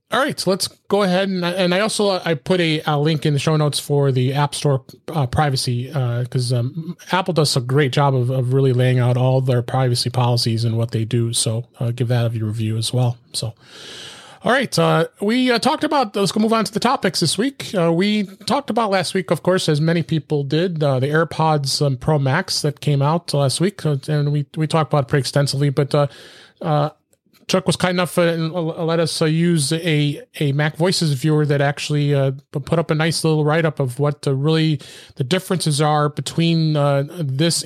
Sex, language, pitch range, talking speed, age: male, English, 135-165 Hz, 225 wpm, 30-49